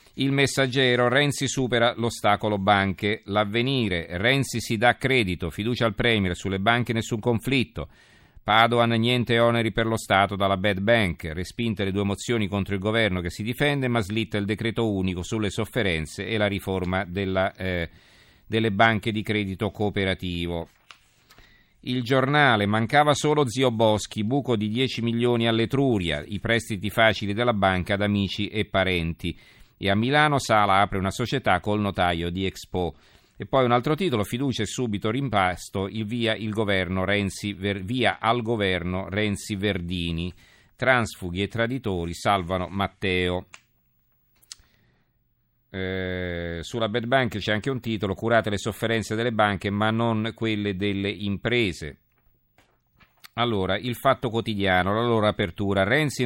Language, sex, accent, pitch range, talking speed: Italian, male, native, 95-120 Hz, 140 wpm